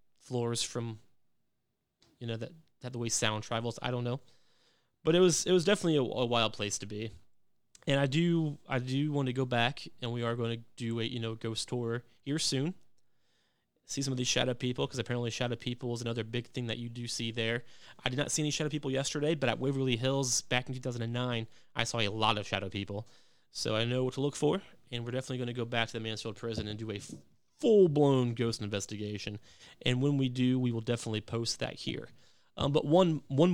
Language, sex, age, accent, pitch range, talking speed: English, male, 20-39, American, 115-140 Hz, 230 wpm